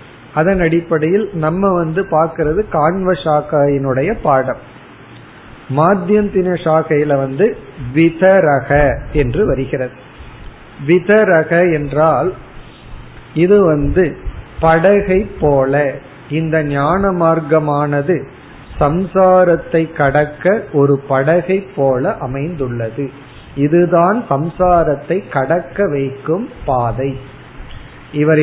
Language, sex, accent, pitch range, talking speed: Tamil, male, native, 135-175 Hz, 65 wpm